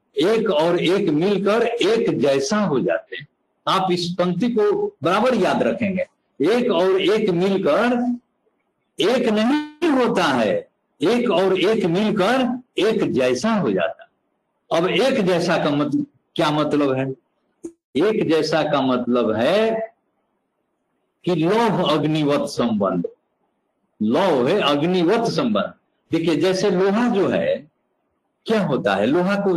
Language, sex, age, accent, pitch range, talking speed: Hindi, male, 60-79, native, 170-225 Hz, 125 wpm